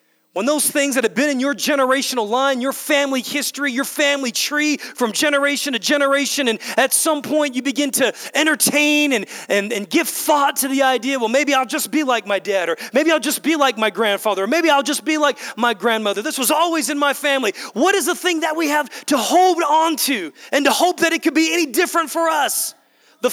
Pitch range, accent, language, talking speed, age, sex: 205-295 Hz, American, English, 230 wpm, 30-49, male